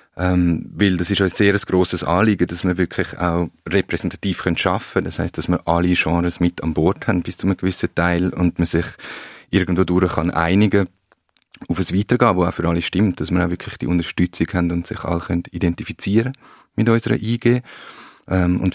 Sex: male